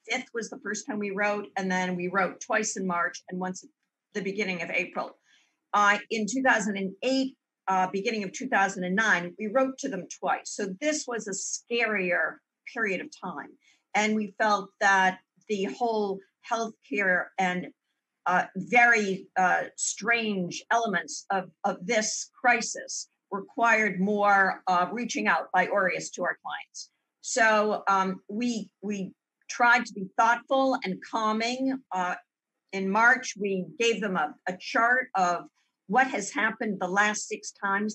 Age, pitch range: 50-69, 190-235 Hz